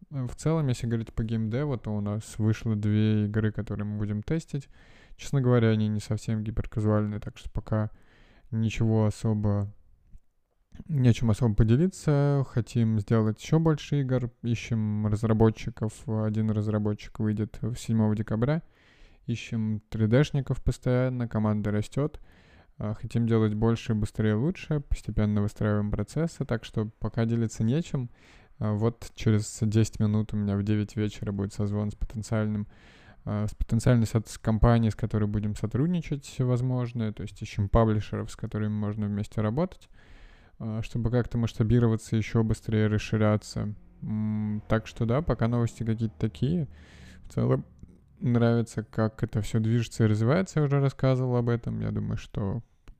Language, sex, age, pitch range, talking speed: Russian, male, 20-39, 105-120 Hz, 140 wpm